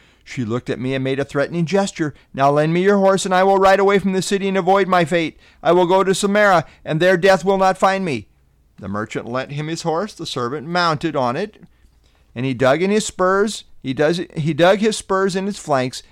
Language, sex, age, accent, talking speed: English, male, 40-59, American, 240 wpm